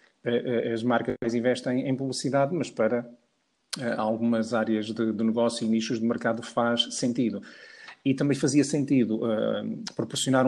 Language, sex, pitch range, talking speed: Portuguese, male, 115-130 Hz, 125 wpm